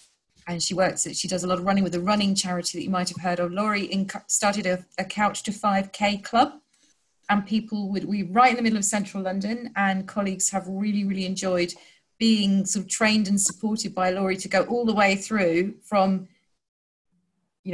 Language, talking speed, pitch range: English, 210 wpm, 180-210 Hz